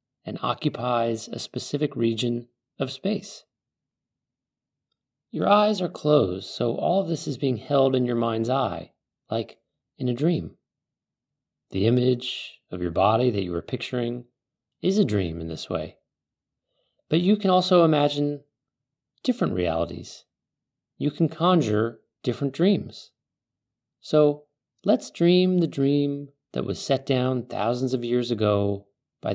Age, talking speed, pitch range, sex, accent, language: 30-49, 135 wpm, 110-145 Hz, male, American, English